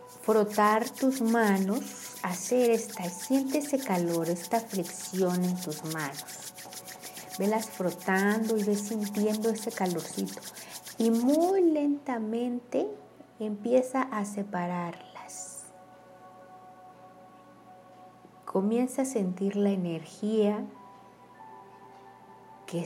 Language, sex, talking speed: Spanish, female, 85 wpm